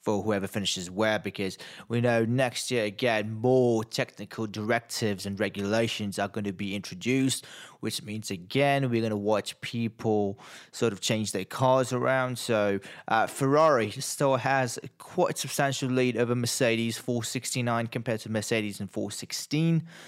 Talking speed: 155 wpm